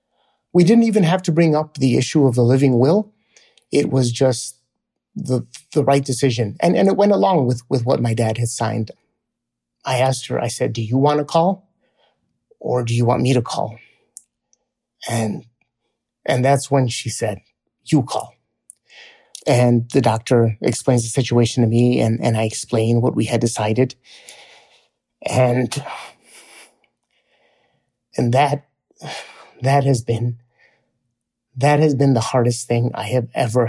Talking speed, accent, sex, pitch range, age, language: 155 wpm, American, male, 120-145 Hz, 30-49, English